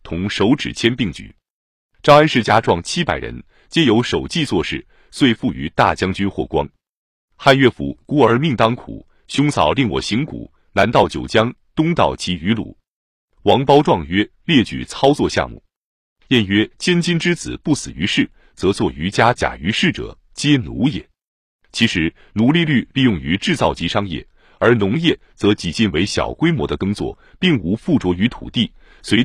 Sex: male